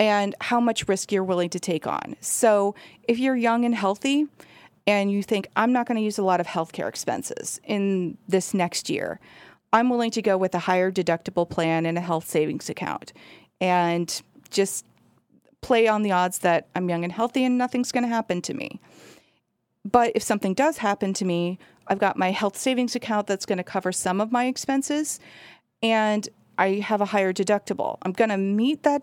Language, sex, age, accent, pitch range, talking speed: English, female, 30-49, American, 190-240 Hz, 200 wpm